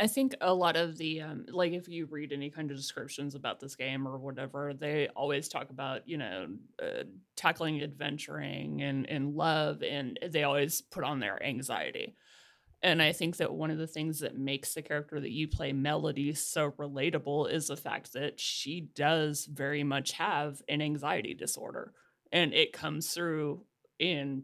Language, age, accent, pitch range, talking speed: English, 30-49, American, 145-165 Hz, 180 wpm